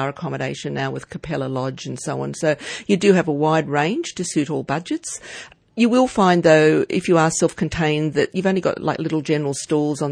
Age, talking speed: 50-69, 215 wpm